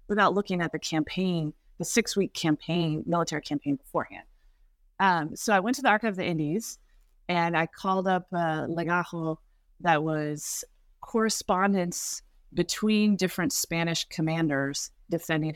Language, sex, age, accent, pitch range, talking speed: English, female, 30-49, American, 155-195 Hz, 135 wpm